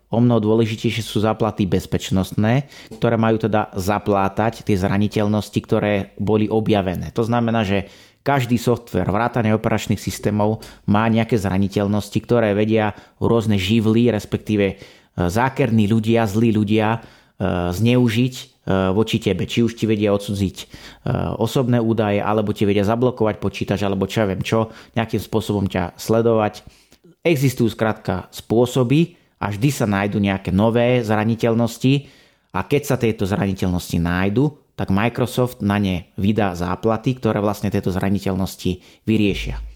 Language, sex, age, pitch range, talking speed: Slovak, male, 30-49, 100-120 Hz, 130 wpm